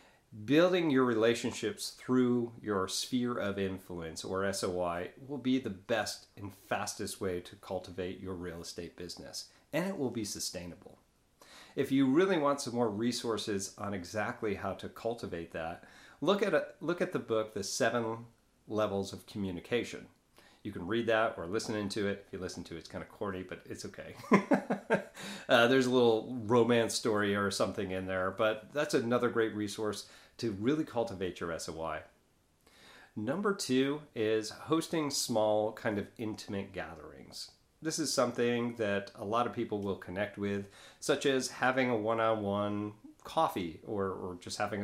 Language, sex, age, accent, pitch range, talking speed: English, male, 40-59, American, 95-120 Hz, 165 wpm